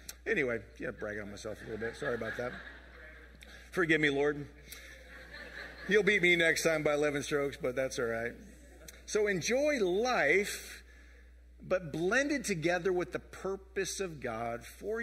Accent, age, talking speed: American, 40-59, 160 wpm